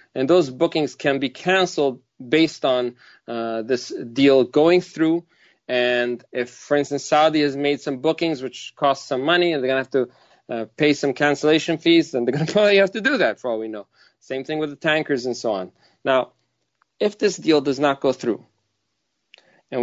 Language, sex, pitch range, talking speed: English, male, 125-155 Hz, 205 wpm